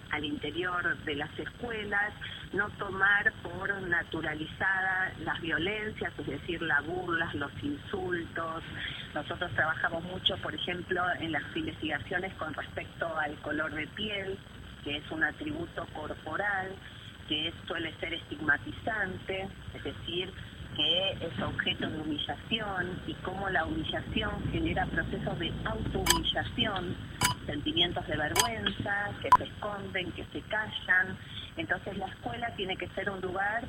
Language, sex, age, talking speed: Spanish, female, 40-59, 130 wpm